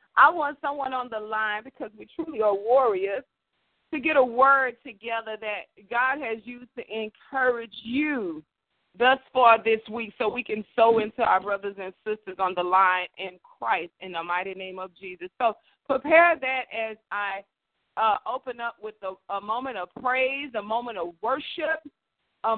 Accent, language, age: American, English, 40-59